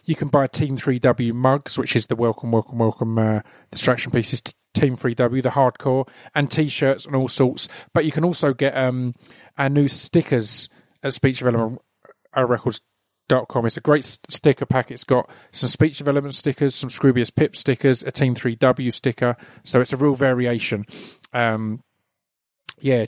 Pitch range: 115-140 Hz